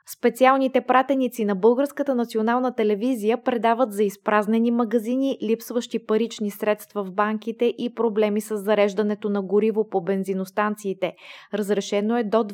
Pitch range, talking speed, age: 205-235 Hz, 125 wpm, 20-39